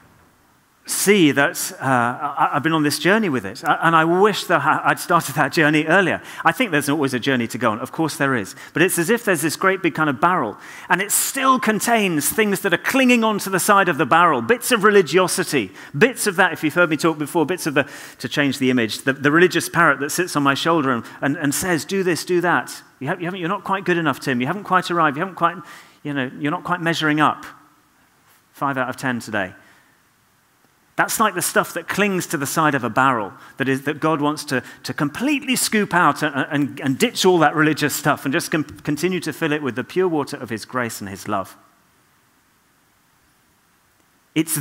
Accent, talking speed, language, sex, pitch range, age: British, 225 wpm, English, male, 140-175 Hz, 40-59